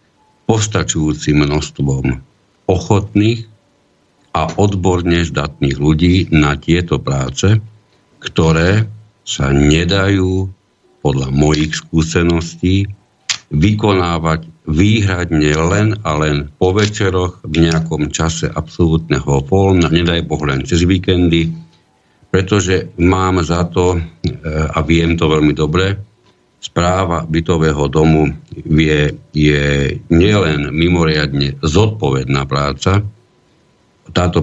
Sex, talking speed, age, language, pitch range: male, 90 wpm, 50-69, Slovak, 75-95 Hz